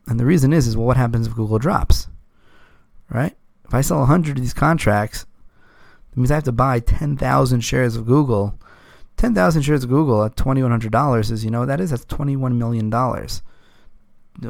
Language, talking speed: English, 185 wpm